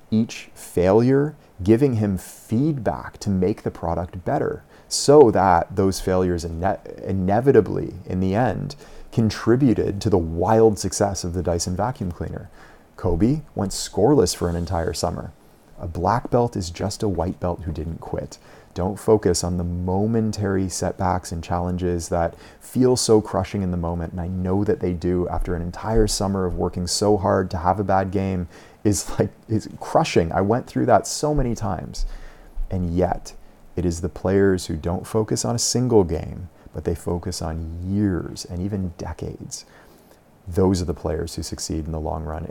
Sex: male